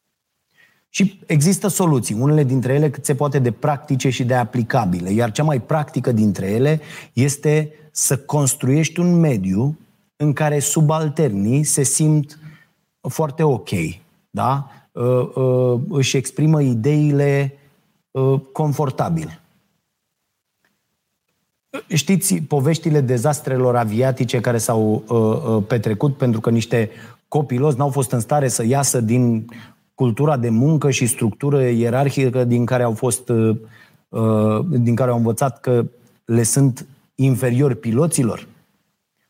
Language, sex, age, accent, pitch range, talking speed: Romanian, male, 30-49, native, 120-150 Hz, 115 wpm